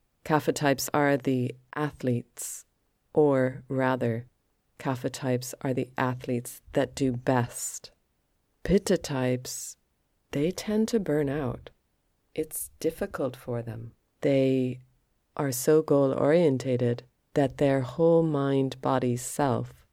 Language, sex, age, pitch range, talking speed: English, female, 30-49, 125-145 Hz, 110 wpm